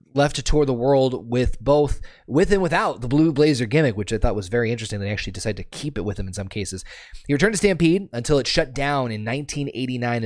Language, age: English, 20-39